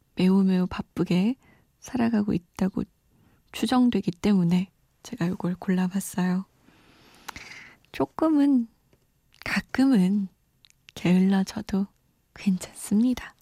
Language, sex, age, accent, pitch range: Korean, female, 20-39, native, 185-245 Hz